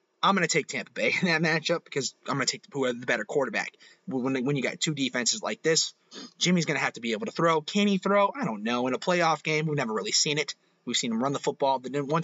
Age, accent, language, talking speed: 30-49, American, English, 275 wpm